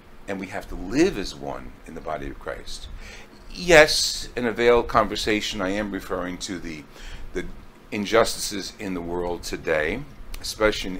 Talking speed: 160 wpm